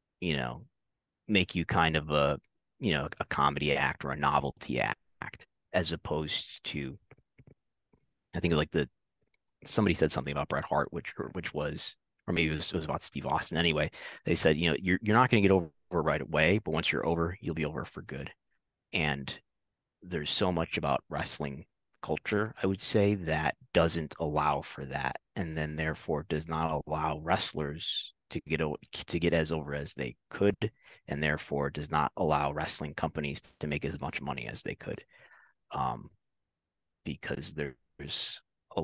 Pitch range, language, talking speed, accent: 75-95 Hz, English, 180 wpm, American